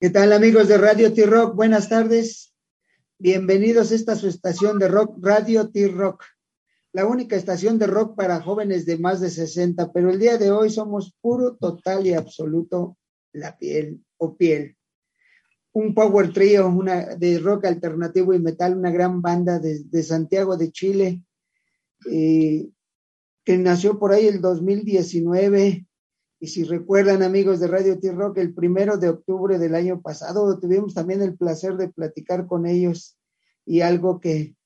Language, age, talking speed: English, 50-69, 160 wpm